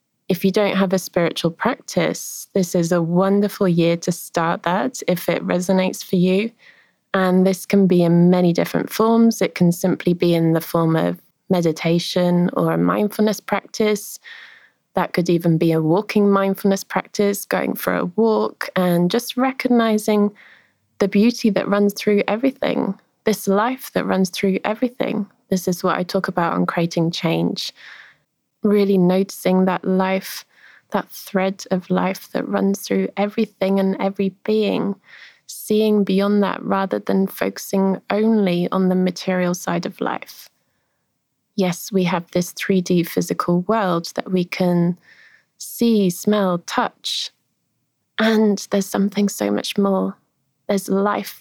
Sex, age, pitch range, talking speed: female, 20-39, 175-205 Hz, 145 wpm